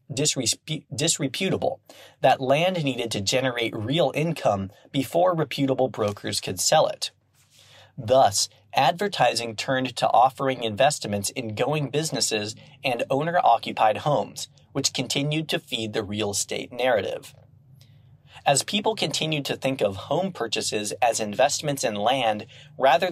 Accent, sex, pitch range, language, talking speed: American, male, 110-145 Hz, English, 120 wpm